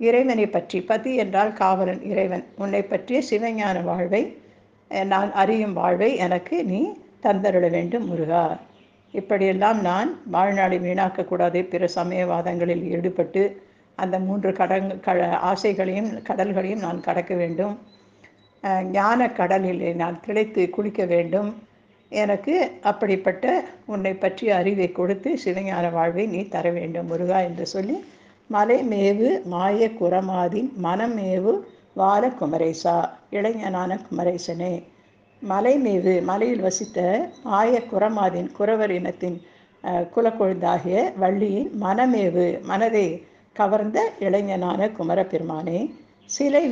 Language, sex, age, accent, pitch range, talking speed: Tamil, female, 60-79, native, 180-215 Hz, 100 wpm